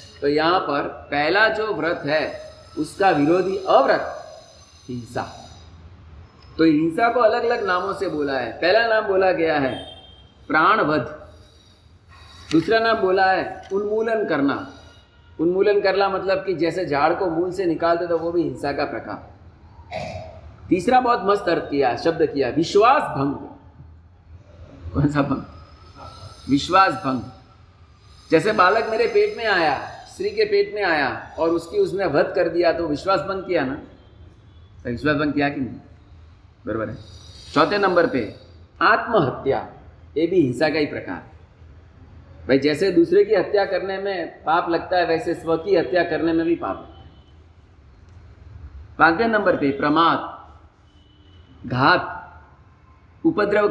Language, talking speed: Hindi, 140 wpm